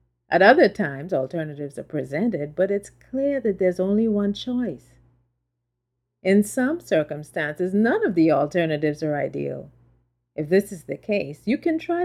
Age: 40-59